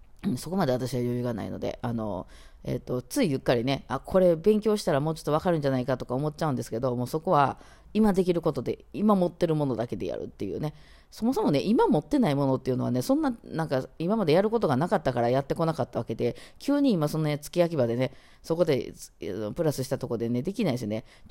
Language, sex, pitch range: Japanese, female, 125-175 Hz